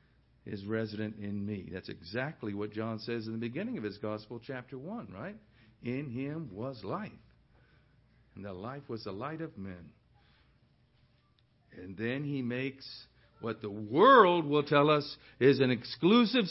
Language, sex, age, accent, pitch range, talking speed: English, male, 60-79, American, 110-155 Hz, 155 wpm